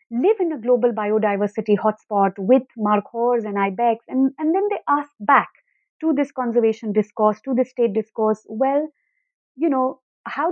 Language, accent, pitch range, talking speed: English, Indian, 215-285 Hz, 165 wpm